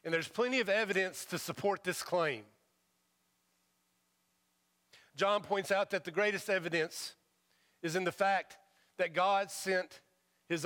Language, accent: English, American